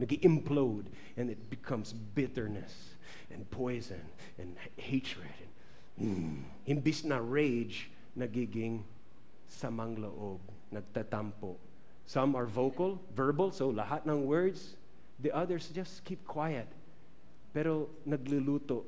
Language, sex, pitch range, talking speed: English, male, 110-145 Hz, 110 wpm